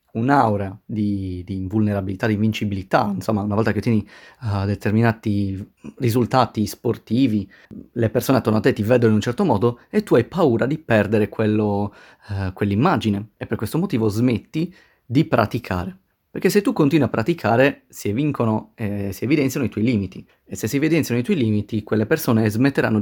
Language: Italian